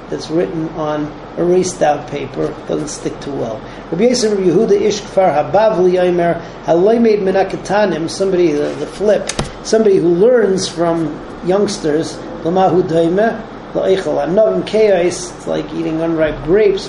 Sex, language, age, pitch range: male, English, 40-59, 155-195 Hz